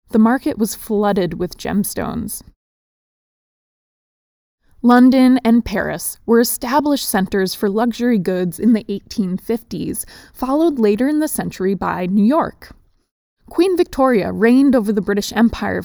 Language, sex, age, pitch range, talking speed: English, female, 20-39, 195-245 Hz, 125 wpm